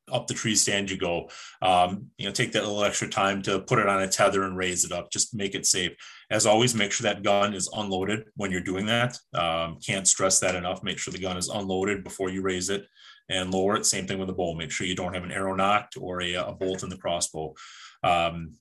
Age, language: 30-49, English